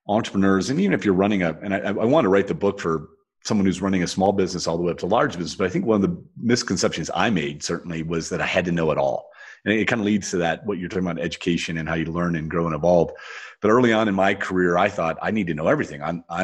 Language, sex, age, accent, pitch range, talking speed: English, male, 40-59, American, 85-95 Hz, 300 wpm